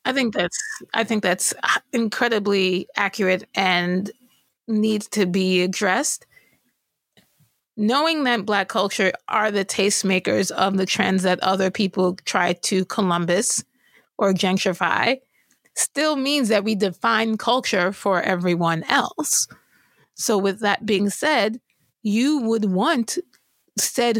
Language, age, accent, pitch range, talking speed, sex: English, 30-49, American, 185-235 Hz, 120 wpm, female